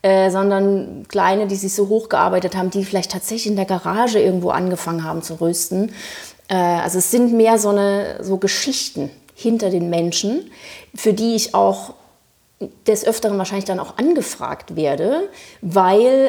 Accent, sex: German, female